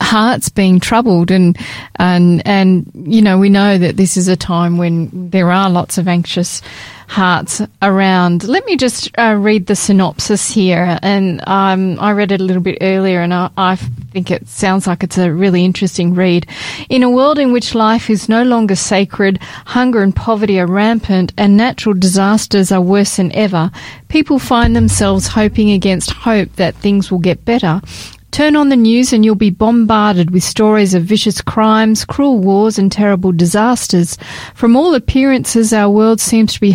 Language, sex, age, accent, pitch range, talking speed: English, female, 30-49, Australian, 185-220 Hz, 180 wpm